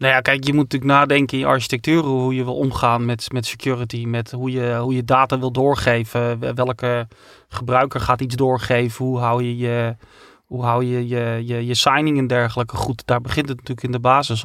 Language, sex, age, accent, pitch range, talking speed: Dutch, male, 30-49, Dutch, 120-135 Hz, 210 wpm